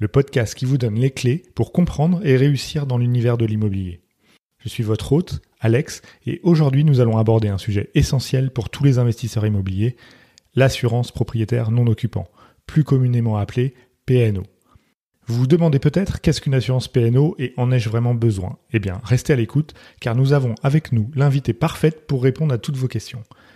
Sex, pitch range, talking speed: male, 115-140 Hz, 185 wpm